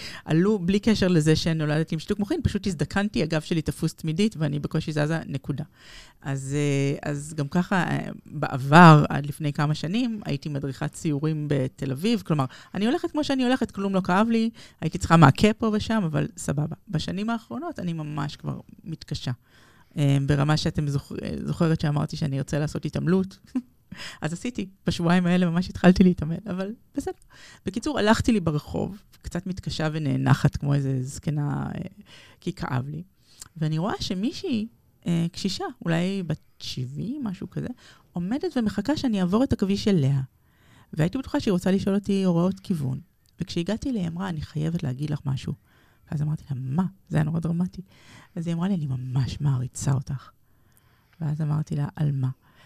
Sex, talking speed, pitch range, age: female, 160 wpm, 145-195 Hz, 30-49